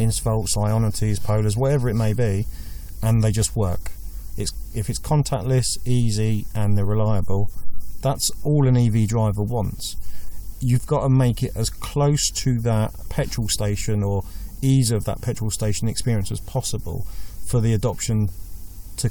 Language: English